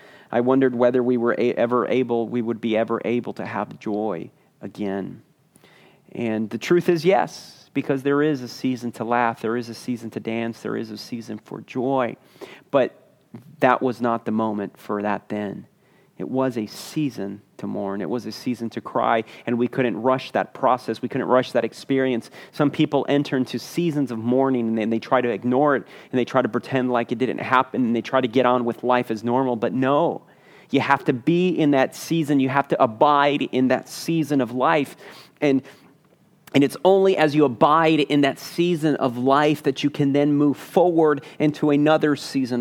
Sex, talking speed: male, 205 wpm